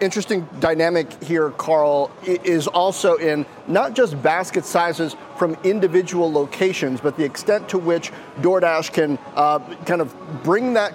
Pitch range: 160-200 Hz